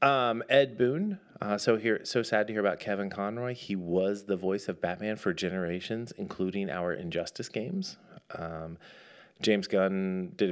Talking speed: 165 wpm